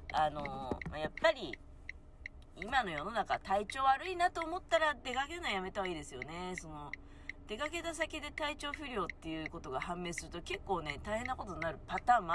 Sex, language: female, Japanese